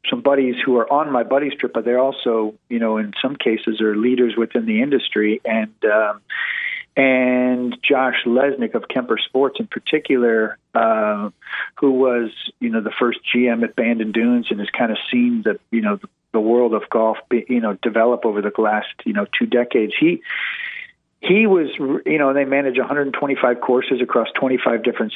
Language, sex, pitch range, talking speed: English, male, 115-145 Hz, 190 wpm